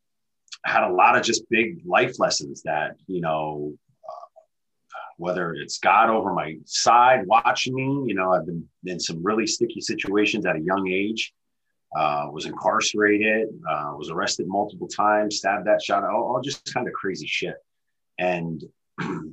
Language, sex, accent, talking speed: English, male, American, 160 wpm